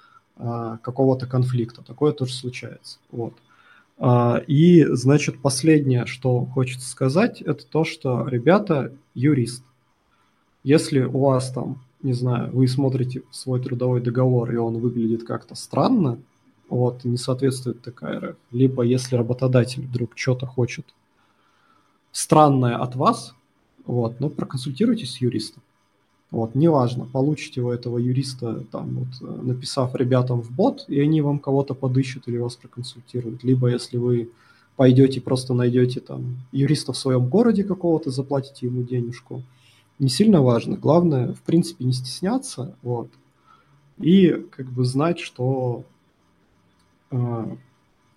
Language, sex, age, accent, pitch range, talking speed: Russian, male, 20-39, native, 120-140 Hz, 125 wpm